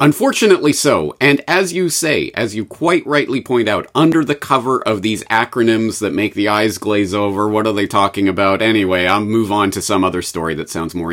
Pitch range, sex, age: 95-160 Hz, male, 40-59